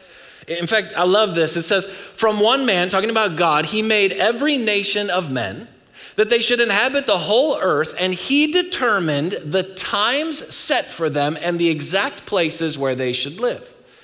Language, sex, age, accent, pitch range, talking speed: English, male, 30-49, American, 170-230 Hz, 180 wpm